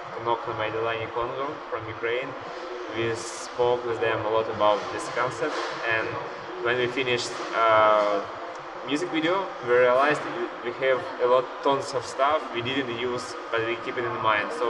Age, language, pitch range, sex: 20-39, English, 115-135 Hz, male